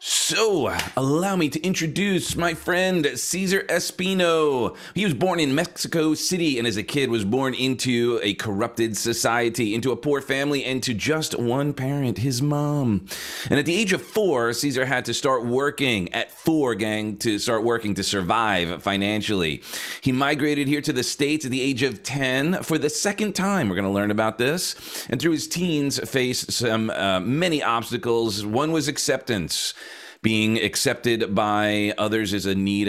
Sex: male